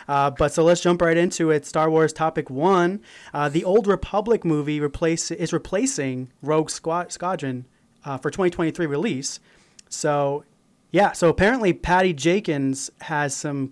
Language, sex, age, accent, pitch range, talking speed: English, male, 30-49, American, 140-170 Hz, 155 wpm